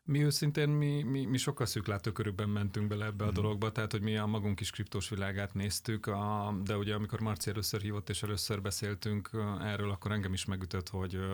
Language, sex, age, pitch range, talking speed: Hungarian, male, 30-49, 95-105 Hz, 200 wpm